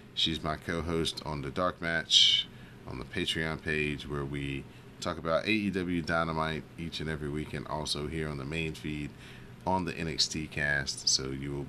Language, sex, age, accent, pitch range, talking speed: English, male, 30-49, American, 70-80 Hz, 180 wpm